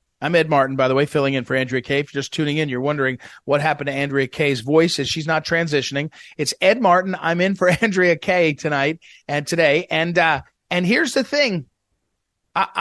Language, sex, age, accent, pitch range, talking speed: English, male, 40-59, American, 140-190 Hz, 215 wpm